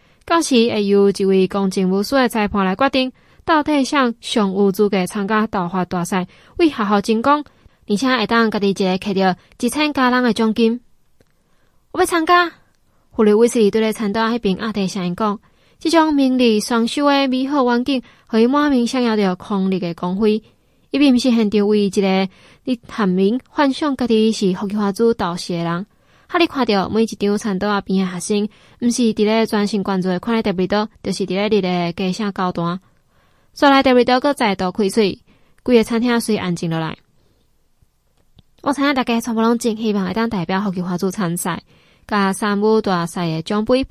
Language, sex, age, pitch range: Chinese, female, 20-39, 195-245 Hz